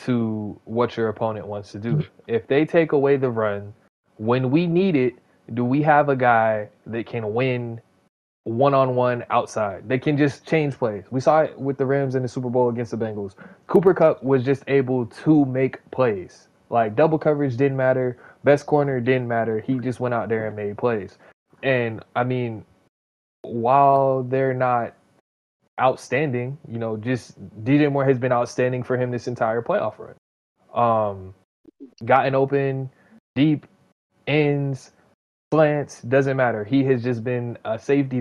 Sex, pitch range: male, 115-135 Hz